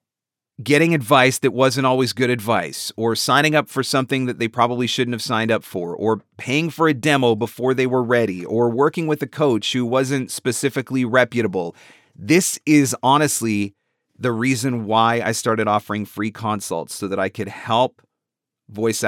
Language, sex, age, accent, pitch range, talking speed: English, male, 40-59, American, 110-135 Hz, 175 wpm